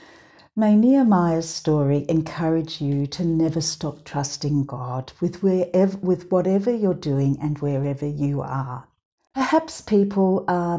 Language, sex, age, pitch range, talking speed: English, female, 60-79, 145-190 Hz, 120 wpm